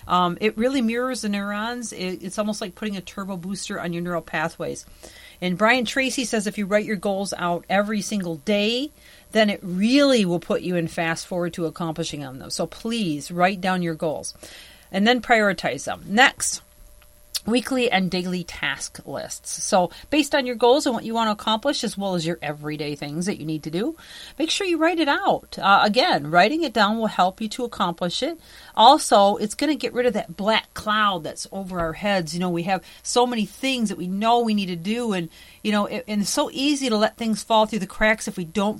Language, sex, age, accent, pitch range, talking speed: English, female, 40-59, American, 175-225 Hz, 225 wpm